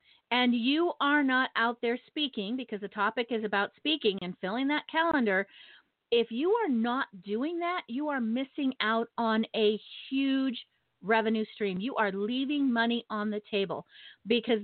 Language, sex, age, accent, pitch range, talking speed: English, female, 40-59, American, 200-265 Hz, 165 wpm